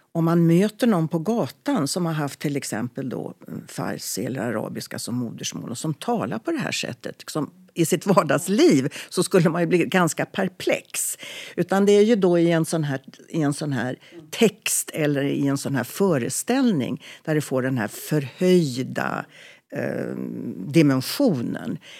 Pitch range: 135-185 Hz